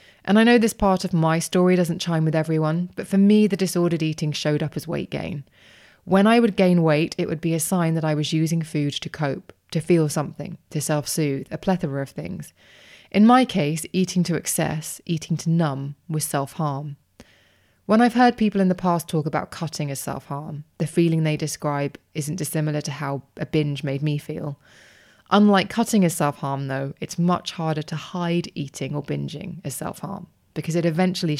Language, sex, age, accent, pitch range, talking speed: English, female, 20-39, British, 150-180 Hz, 195 wpm